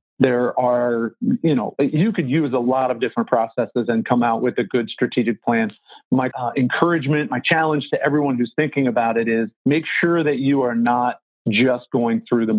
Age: 40-59